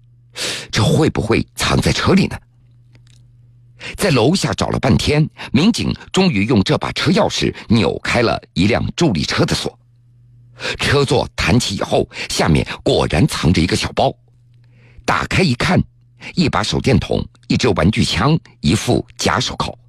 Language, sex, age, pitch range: Chinese, male, 50-69, 115-120 Hz